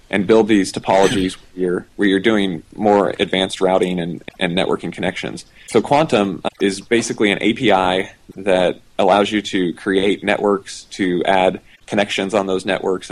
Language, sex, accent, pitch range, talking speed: English, male, American, 90-100 Hz, 155 wpm